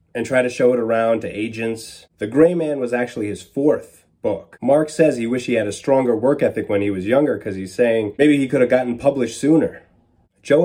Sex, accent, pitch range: male, American, 105-130 Hz